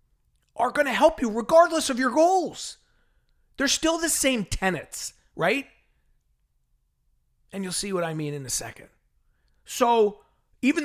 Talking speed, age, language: 145 wpm, 40-59, English